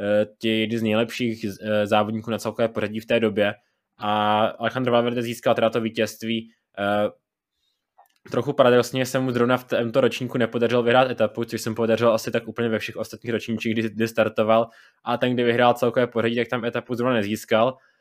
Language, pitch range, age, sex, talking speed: Czech, 110-120 Hz, 20-39, male, 175 wpm